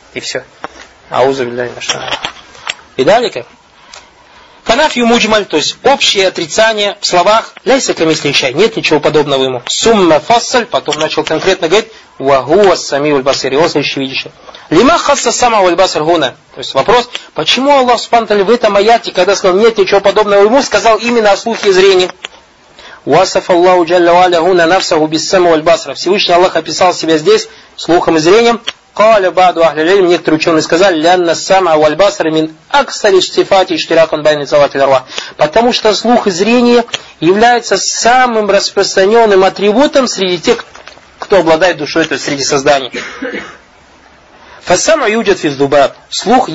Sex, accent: male, native